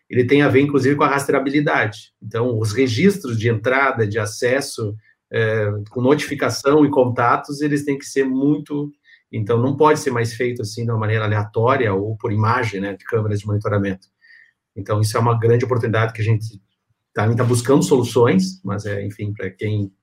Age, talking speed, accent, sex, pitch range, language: 40-59, 185 wpm, Brazilian, male, 110-135 Hz, Portuguese